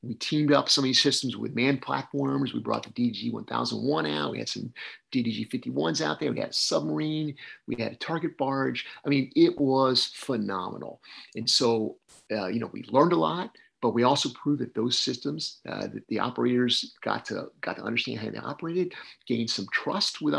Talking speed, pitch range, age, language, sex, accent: 195 wpm, 115-145 Hz, 50-69, English, male, American